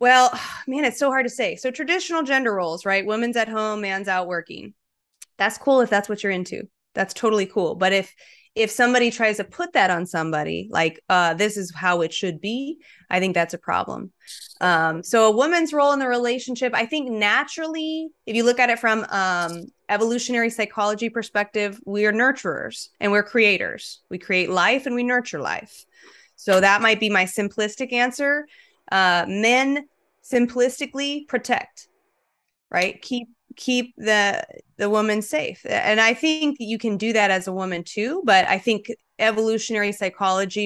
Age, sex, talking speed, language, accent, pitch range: 20-39, female, 175 wpm, English, American, 190-245 Hz